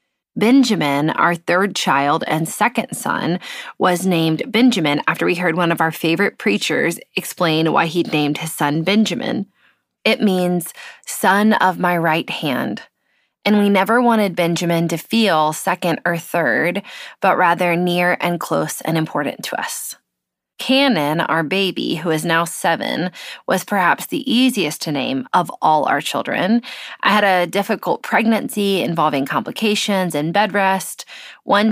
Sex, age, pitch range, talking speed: female, 20-39, 160-210 Hz, 150 wpm